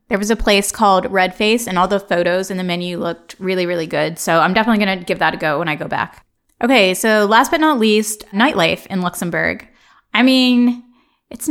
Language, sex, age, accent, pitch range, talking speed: English, female, 20-39, American, 180-225 Hz, 225 wpm